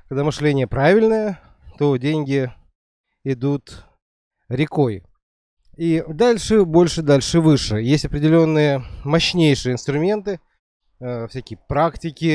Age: 30-49